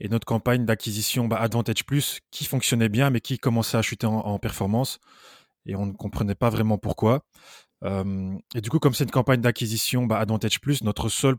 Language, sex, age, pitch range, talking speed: French, male, 20-39, 105-120 Hz, 205 wpm